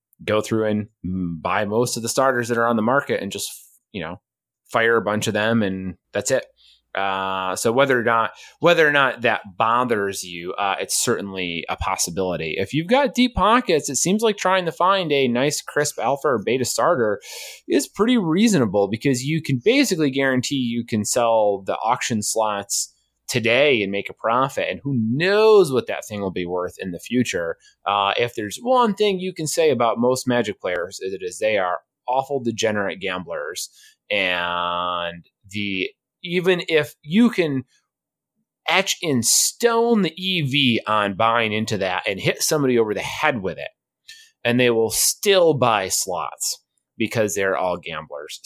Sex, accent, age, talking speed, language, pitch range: male, American, 30-49, 175 wpm, English, 100-165 Hz